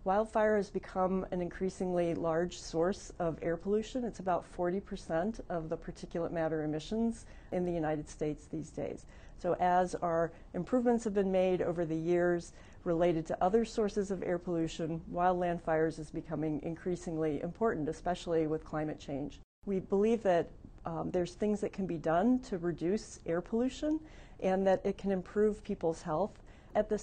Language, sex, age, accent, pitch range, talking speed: English, female, 40-59, American, 165-205 Hz, 165 wpm